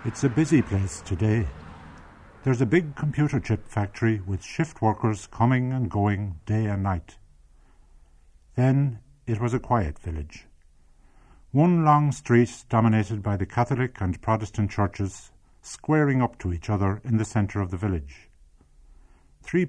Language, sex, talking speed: English, male, 145 wpm